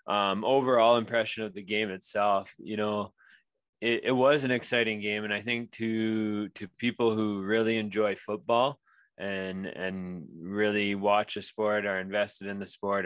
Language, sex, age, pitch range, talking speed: English, male, 20-39, 95-105 Hz, 165 wpm